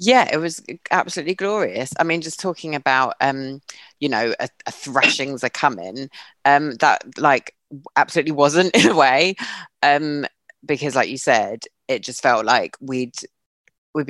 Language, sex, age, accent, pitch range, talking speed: English, female, 30-49, British, 120-145 Hz, 160 wpm